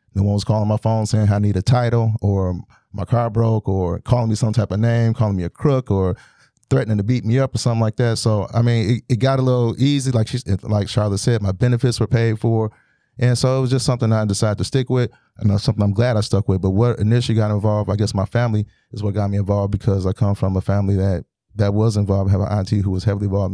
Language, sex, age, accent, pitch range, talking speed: English, male, 30-49, American, 100-115 Hz, 270 wpm